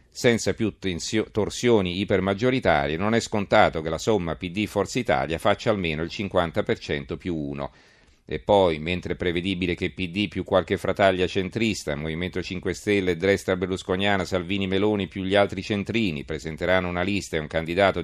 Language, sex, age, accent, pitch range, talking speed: Italian, male, 40-59, native, 85-105 Hz, 155 wpm